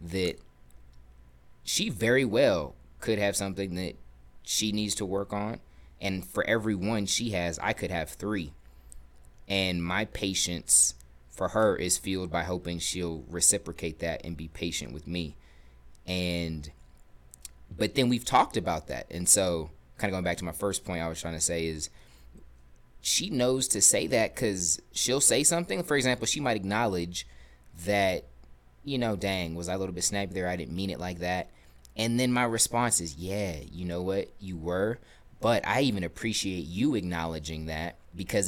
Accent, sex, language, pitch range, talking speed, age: American, male, English, 70-100 Hz, 175 wpm, 20-39